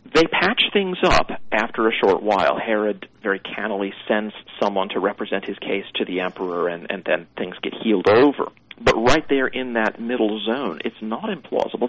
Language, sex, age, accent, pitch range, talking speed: English, male, 40-59, American, 105-120 Hz, 185 wpm